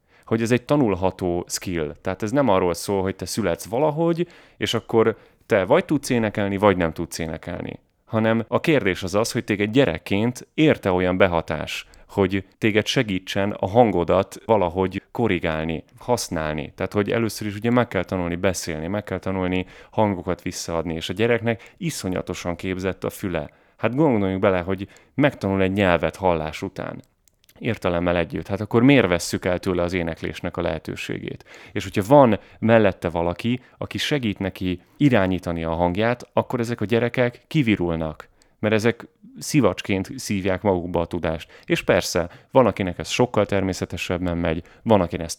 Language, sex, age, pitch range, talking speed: Hungarian, male, 30-49, 90-115 Hz, 155 wpm